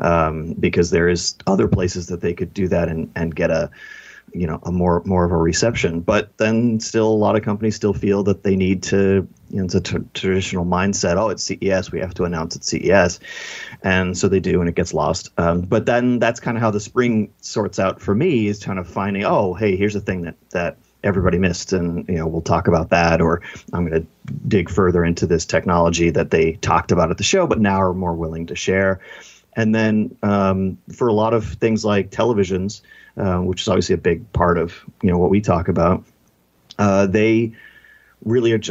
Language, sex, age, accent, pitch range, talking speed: English, male, 30-49, American, 85-105 Hz, 225 wpm